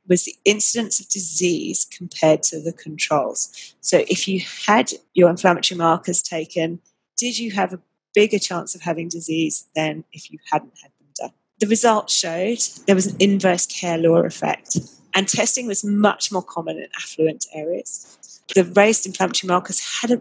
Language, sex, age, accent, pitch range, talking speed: English, female, 30-49, British, 175-205 Hz, 170 wpm